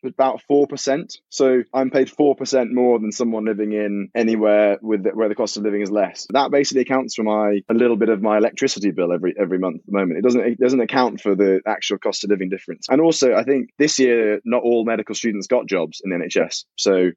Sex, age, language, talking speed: male, 20-39, English, 240 wpm